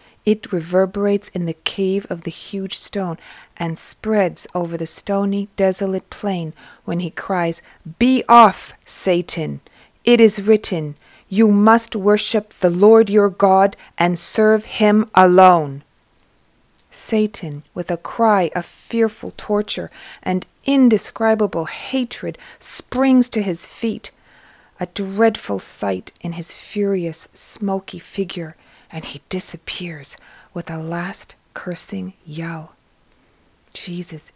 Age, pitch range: 40-59, 170-205 Hz